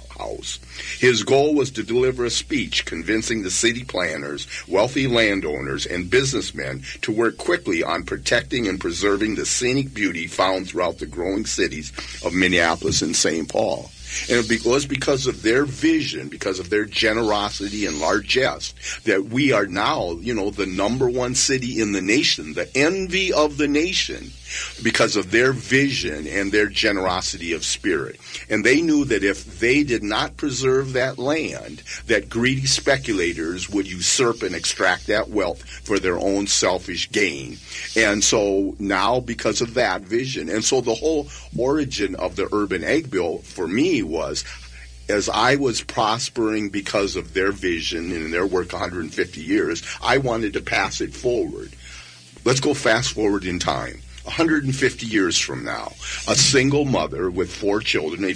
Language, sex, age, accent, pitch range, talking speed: English, male, 50-69, American, 90-130 Hz, 160 wpm